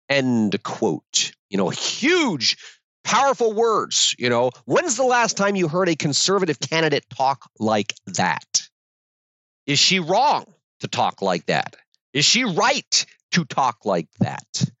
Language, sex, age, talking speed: English, male, 40-59, 140 wpm